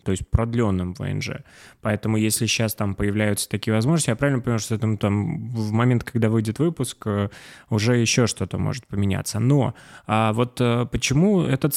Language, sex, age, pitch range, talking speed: Russian, male, 20-39, 105-125 Hz, 170 wpm